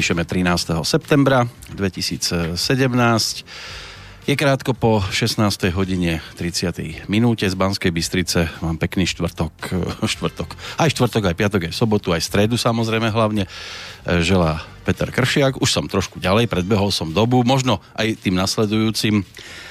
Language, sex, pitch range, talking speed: Slovak, male, 85-110 Hz, 120 wpm